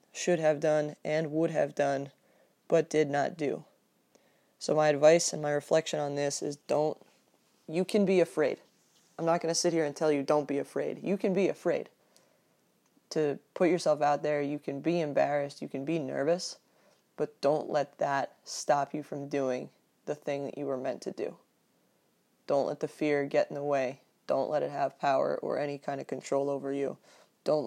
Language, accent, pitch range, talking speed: English, American, 145-160 Hz, 195 wpm